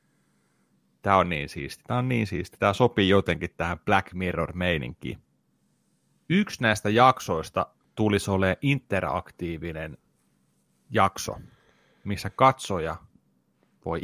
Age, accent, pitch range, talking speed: 30-49, native, 95-120 Hz, 105 wpm